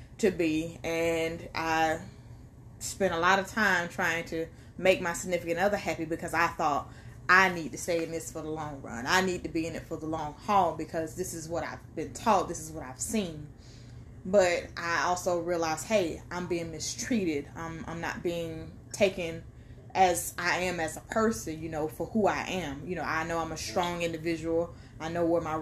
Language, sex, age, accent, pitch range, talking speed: English, female, 20-39, American, 155-180 Hz, 205 wpm